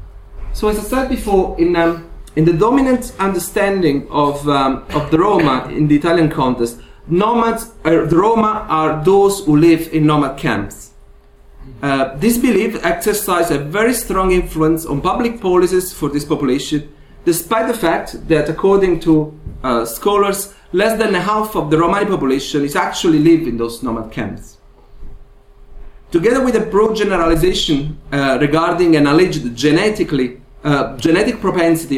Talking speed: 150 wpm